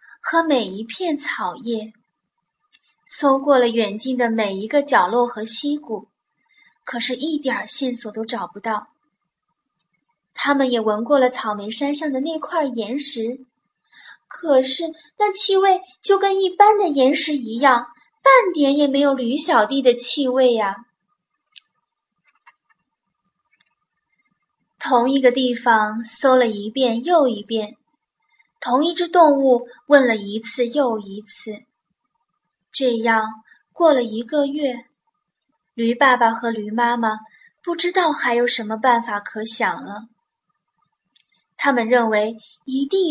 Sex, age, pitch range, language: female, 10-29, 230-300 Hz, Chinese